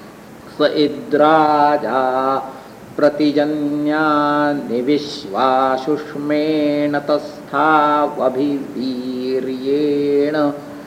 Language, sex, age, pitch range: English, male, 50-69, 145-150 Hz